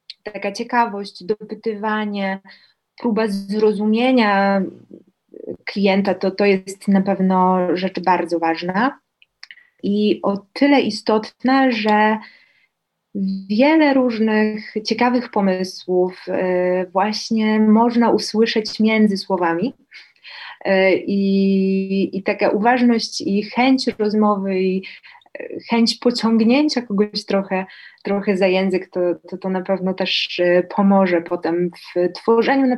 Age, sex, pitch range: 20-39, female, 190-225 Hz